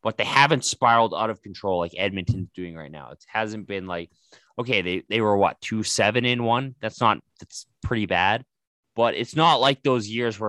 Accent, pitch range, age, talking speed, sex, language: American, 90-110 Hz, 20-39, 210 wpm, male, English